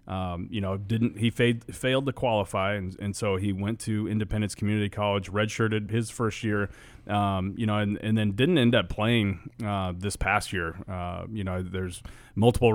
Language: English